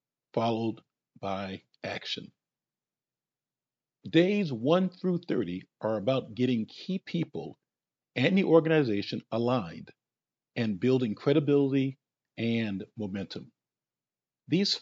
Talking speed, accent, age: 90 wpm, American, 50-69